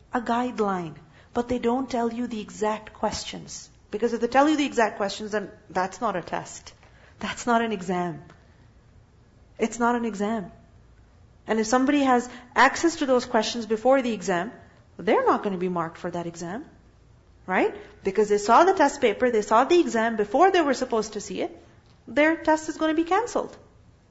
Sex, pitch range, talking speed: female, 215-285 Hz, 190 wpm